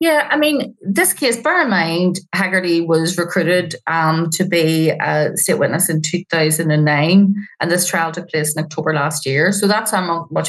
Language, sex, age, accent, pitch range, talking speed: English, female, 30-49, Irish, 165-190 Hz, 200 wpm